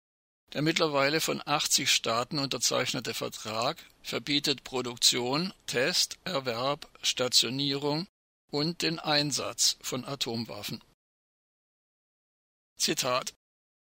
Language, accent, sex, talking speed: German, German, male, 80 wpm